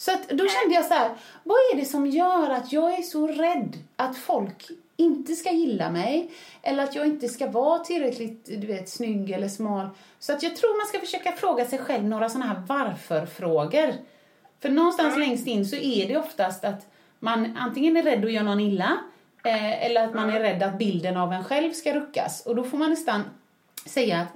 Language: English